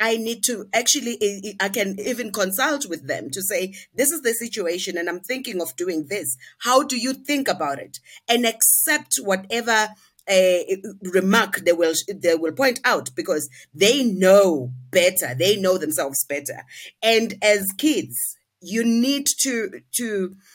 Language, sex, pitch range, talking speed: English, female, 185-255 Hz, 160 wpm